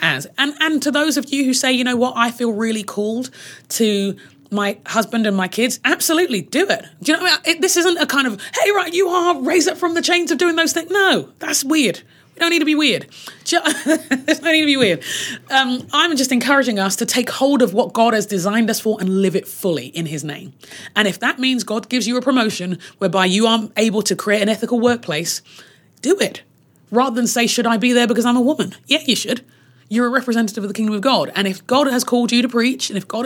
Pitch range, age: 200-270 Hz, 30-49